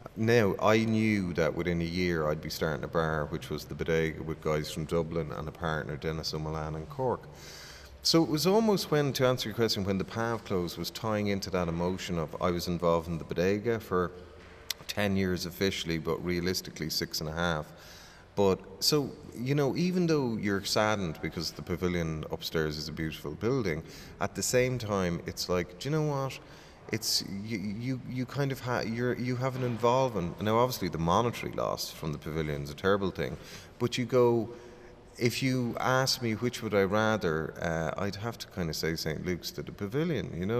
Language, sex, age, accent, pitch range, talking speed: English, male, 30-49, Irish, 85-120 Hz, 200 wpm